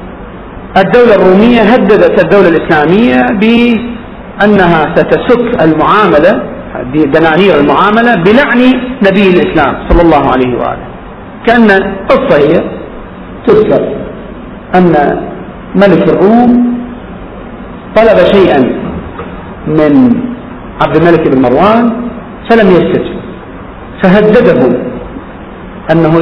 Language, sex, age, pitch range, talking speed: Arabic, male, 50-69, 175-235 Hz, 80 wpm